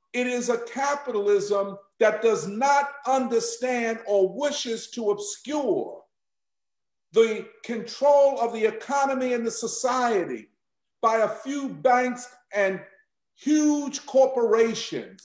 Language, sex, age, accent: English, male, 50-69, American